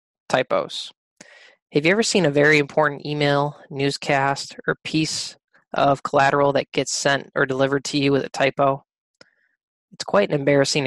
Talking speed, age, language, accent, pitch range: 155 wpm, 20-39, English, American, 135-155 Hz